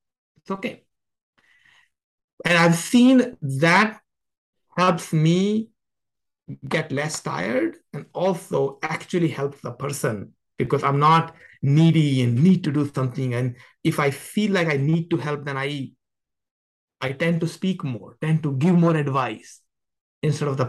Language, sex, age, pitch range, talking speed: Czech, male, 60-79, 120-165 Hz, 145 wpm